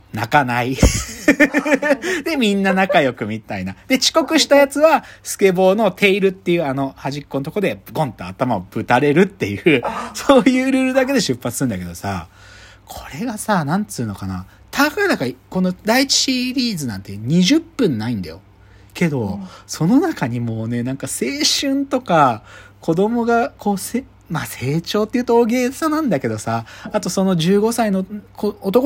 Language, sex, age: Japanese, male, 40-59